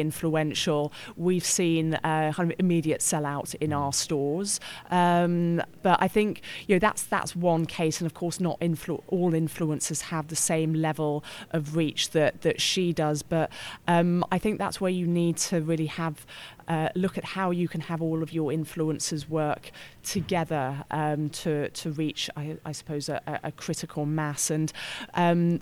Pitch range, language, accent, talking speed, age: 155-175 Hz, English, British, 175 wpm, 20-39